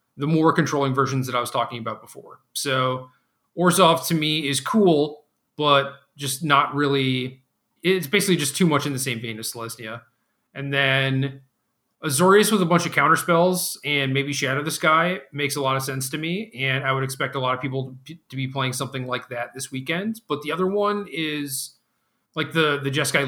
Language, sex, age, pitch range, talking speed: English, male, 30-49, 130-155 Hz, 200 wpm